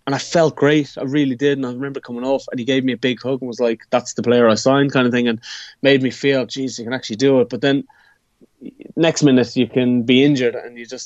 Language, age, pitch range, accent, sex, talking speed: English, 20-39, 110-135 Hz, Irish, male, 275 wpm